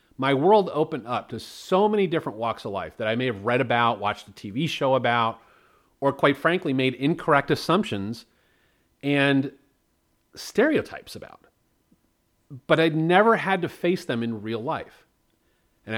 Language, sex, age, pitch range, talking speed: English, male, 40-59, 110-155 Hz, 160 wpm